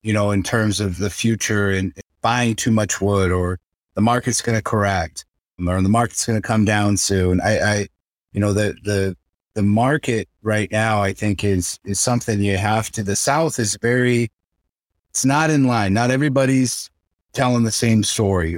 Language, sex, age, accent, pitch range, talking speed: English, male, 30-49, American, 95-120 Hz, 185 wpm